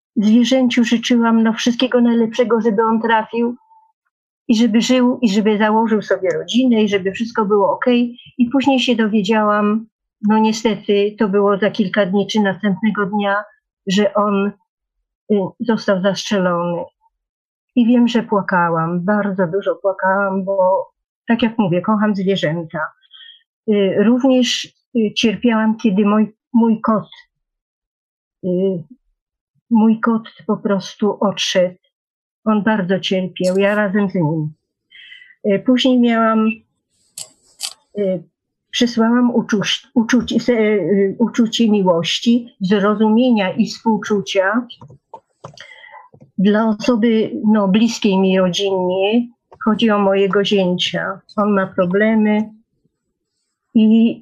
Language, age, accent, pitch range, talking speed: Polish, 40-59, native, 200-235 Hz, 100 wpm